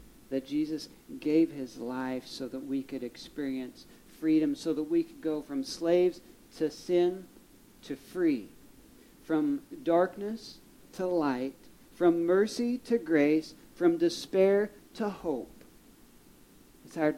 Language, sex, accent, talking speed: English, male, American, 125 wpm